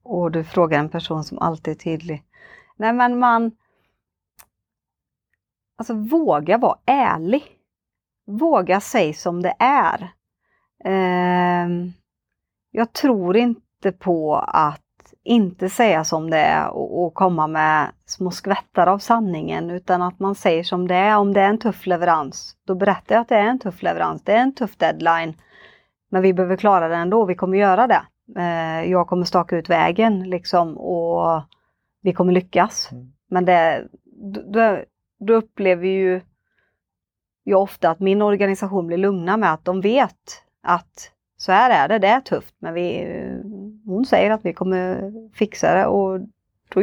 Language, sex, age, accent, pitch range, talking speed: Swedish, female, 30-49, native, 175-205 Hz, 160 wpm